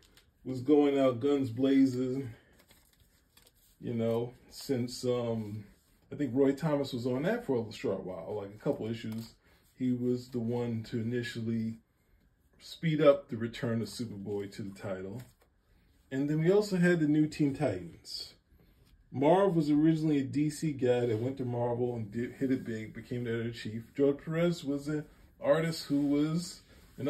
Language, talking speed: English, 165 wpm